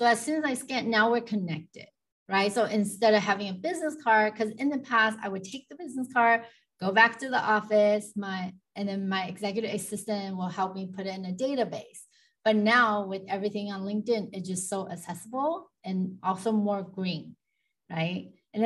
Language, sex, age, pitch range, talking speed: English, female, 30-49, 195-235 Hz, 200 wpm